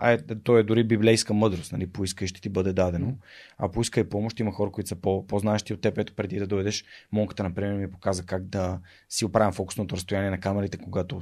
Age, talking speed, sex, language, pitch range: 20-39, 220 wpm, male, Bulgarian, 95-115 Hz